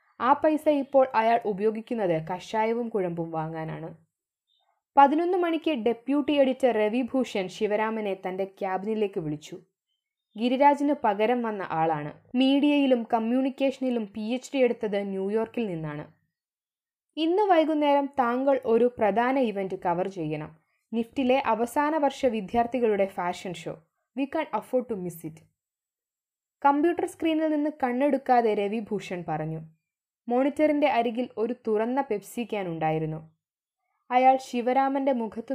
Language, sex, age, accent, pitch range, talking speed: Malayalam, female, 20-39, native, 190-275 Hz, 105 wpm